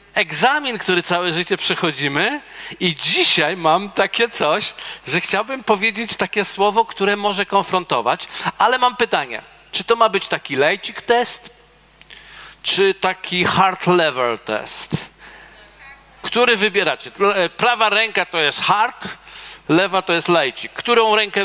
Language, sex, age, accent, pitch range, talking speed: Polish, male, 50-69, native, 160-205 Hz, 130 wpm